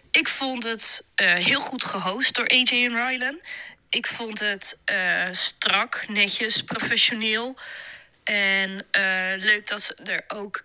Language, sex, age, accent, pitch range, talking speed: Dutch, female, 20-39, Dutch, 205-265 Hz, 140 wpm